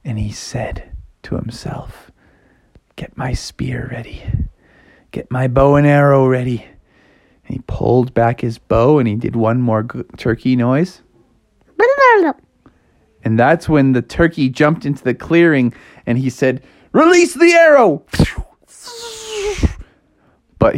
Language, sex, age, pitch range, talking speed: English, male, 30-49, 130-210 Hz, 125 wpm